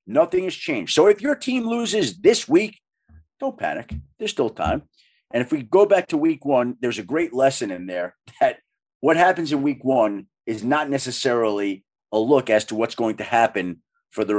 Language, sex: English, male